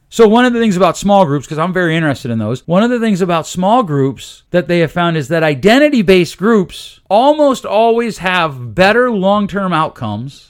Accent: American